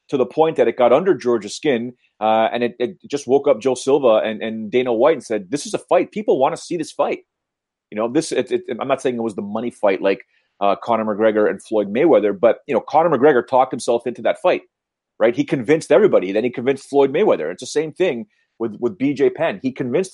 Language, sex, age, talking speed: English, male, 30-49, 245 wpm